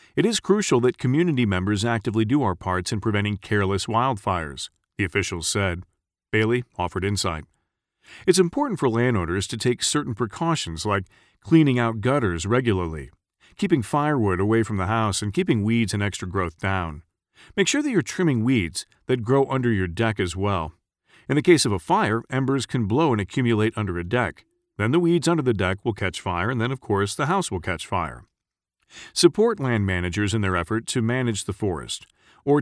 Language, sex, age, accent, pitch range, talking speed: English, male, 40-59, American, 95-140 Hz, 190 wpm